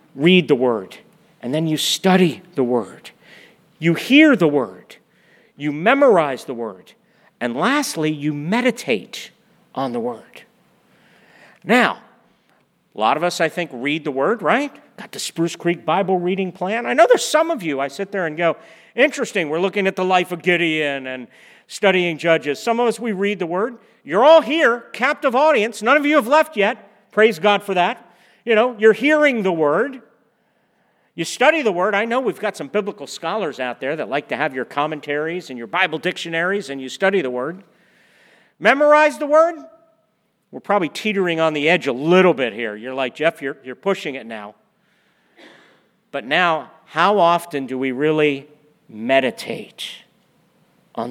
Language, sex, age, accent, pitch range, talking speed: English, male, 50-69, American, 155-235 Hz, 175 wpm